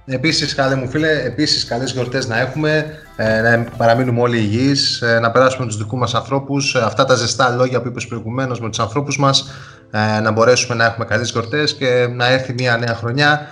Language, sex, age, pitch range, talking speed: Greek, male, 20-39, 120-150 Hz, 185 wpm